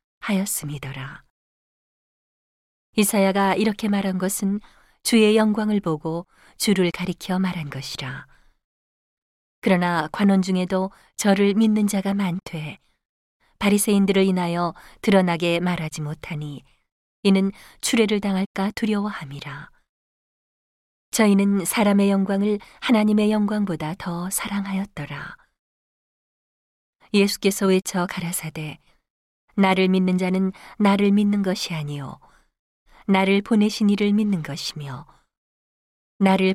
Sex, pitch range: female, 170-205 Hz